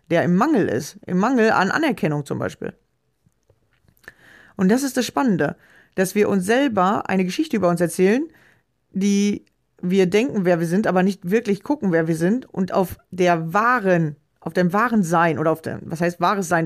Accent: German